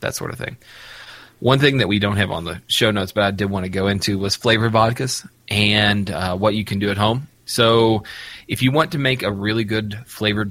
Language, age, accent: English, 20-39, American